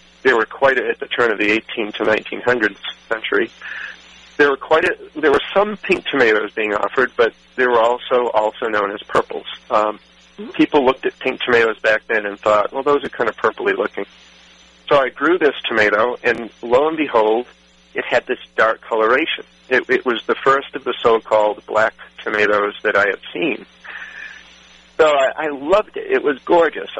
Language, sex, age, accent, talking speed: English, male, 40-59, American, 190 wpm